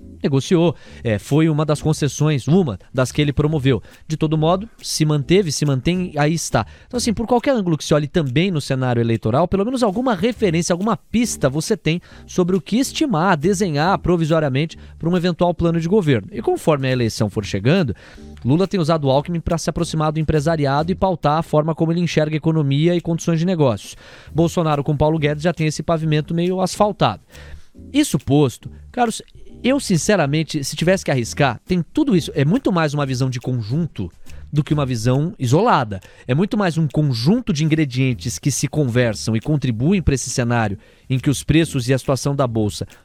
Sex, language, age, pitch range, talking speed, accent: male, Portuguese, 20-39, 130-180 Hz, 190 wpm, Brazilian